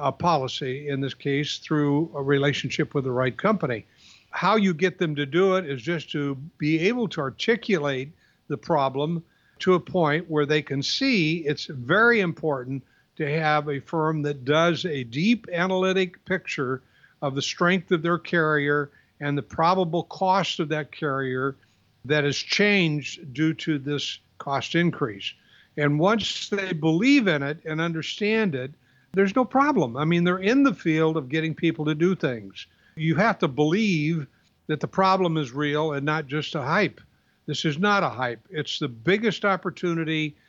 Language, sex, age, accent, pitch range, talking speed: English, male, 60-79, American, 140-175 Hz, 170 wpm